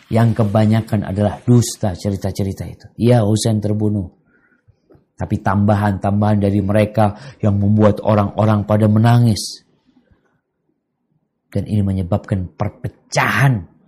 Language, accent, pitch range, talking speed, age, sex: Indonesian, native, 100-115 Hz, 95 wpm, 50-69, male